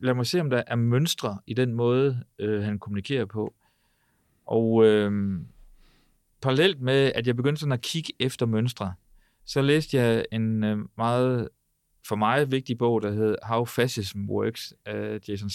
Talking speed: 165 wpm